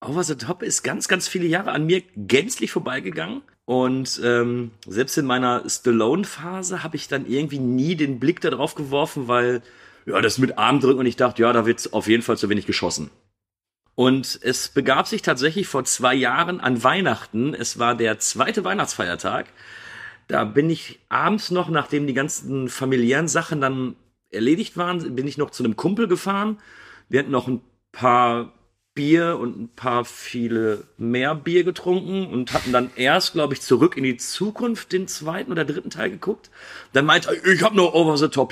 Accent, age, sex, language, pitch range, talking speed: German, 40-59, male, German, 125-180 Hz, 180 wpm